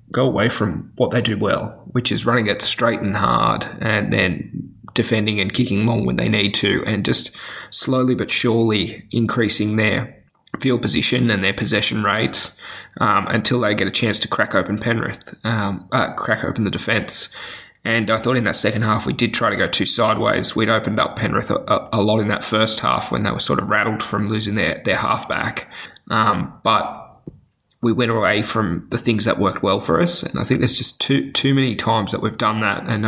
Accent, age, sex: Australian, 20-39, male